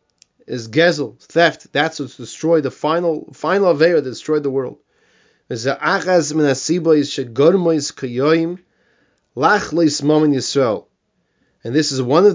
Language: English